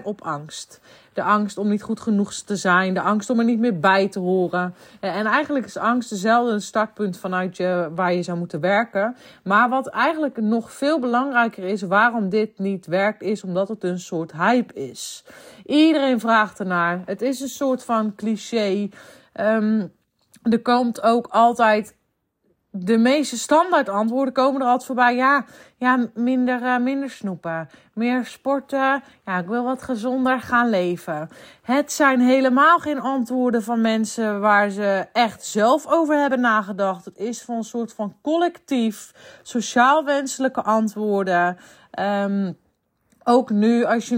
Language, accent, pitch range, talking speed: Dutch, Dutch, 205-260 Hz, 160 wpm